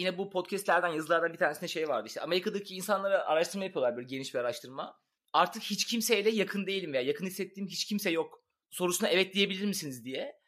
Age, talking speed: 30-49, 190 wpm